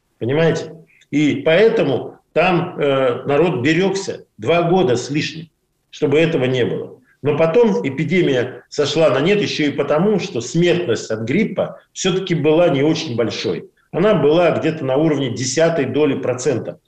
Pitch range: 140-180 Hz